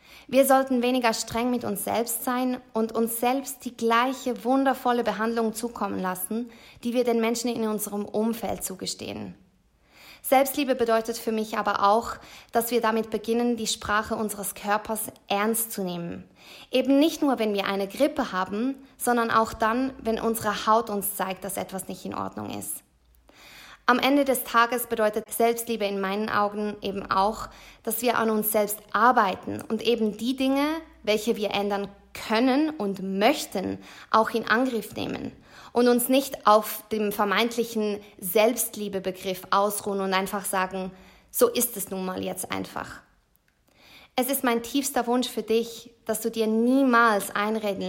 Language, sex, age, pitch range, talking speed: German, female, 20-39, 205-240 Hz, 155 wpm